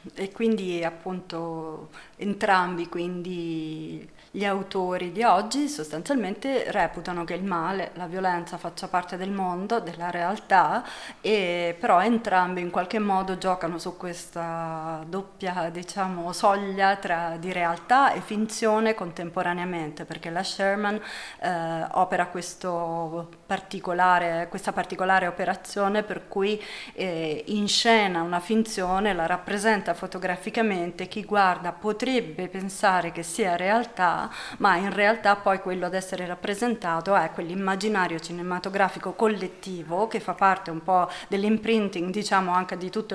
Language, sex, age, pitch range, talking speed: Italian, female, 30-49, 175-205 Hz, 120 wpm